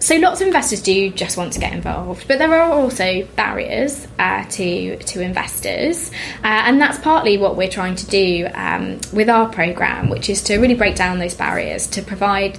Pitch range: 190-240 Hz